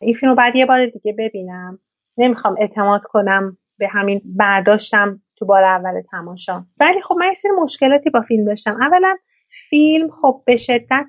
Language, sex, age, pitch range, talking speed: Persian, female, 30-49, 195-230 Hz, 170 wpm